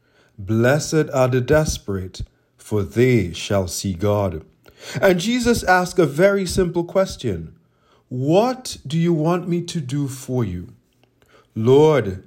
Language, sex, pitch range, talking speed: English, male, 110-170 Hz, 125 wpm